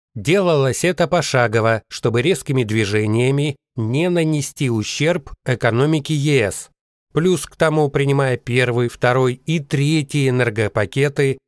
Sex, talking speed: male, 105 wpm